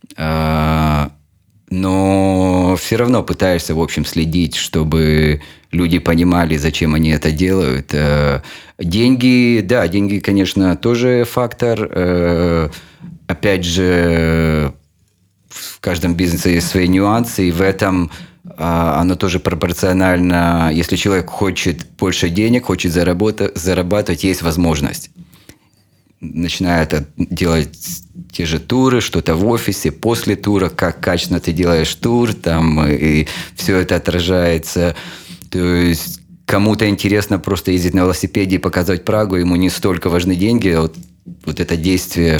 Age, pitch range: 30-49, 85-95 Hz